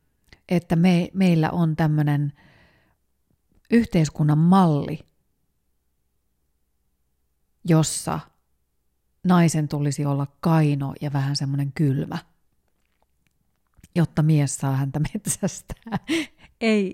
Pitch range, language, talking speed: 135-175 Hz, Finnish, 80 wpm